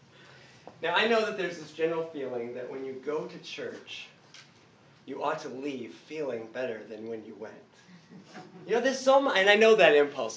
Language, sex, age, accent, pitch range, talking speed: English, male, 40-59, American, 150-205 Hz, 195 wpm